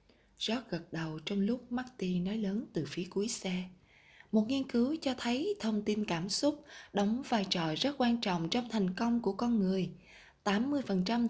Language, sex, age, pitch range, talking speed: Vietnamese, female, 20-39, 180-230 Hz, 180 wpm